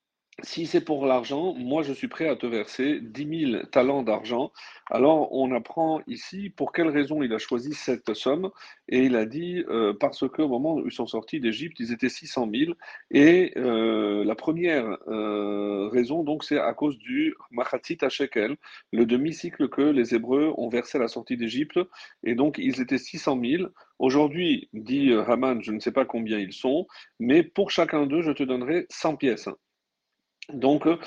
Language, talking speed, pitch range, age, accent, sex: French, 180 wpm, 125-175 Hz, 40-59, French, male